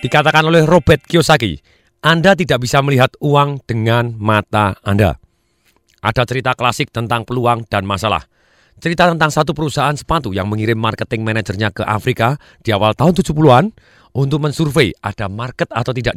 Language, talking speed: Indonesian, 150 wpm